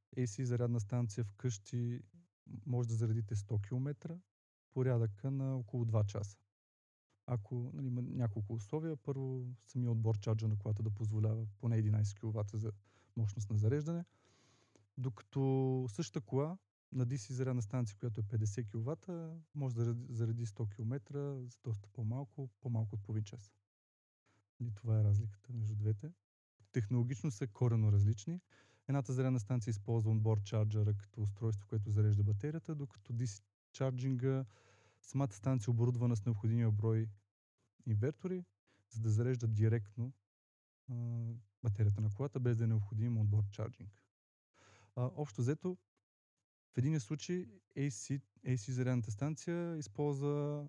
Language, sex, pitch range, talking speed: Bulgarian, male, 110-130 Hz, 135 wpm